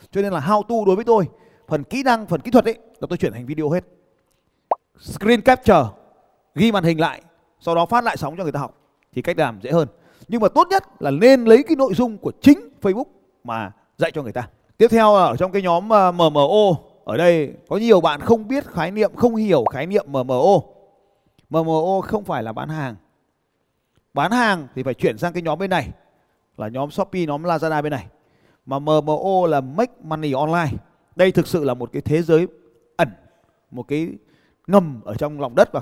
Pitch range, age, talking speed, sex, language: 150-220 Hz, 20-39, 210 wpm, male, Vietnamese